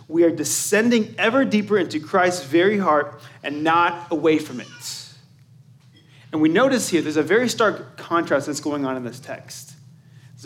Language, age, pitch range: English, 30-49, 135-185 Hz